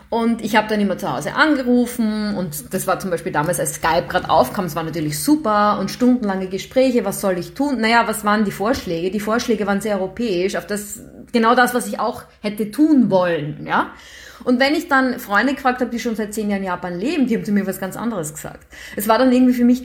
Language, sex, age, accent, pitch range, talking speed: German, female, 30-49, German, 190-245 Hz, 240 wpm